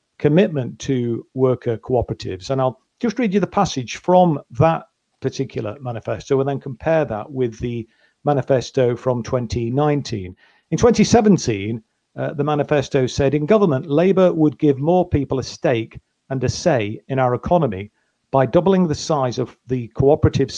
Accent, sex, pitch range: British, male, 120-150 Hz